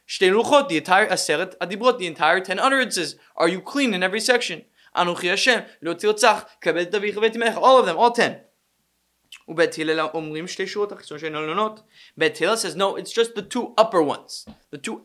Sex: male